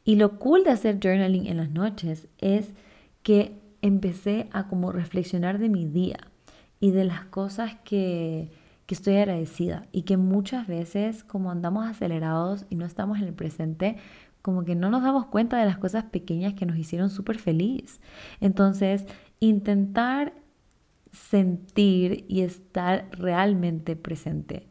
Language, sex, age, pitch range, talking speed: Spanish, female, 20-39, 170-200 Hz, 150 wpm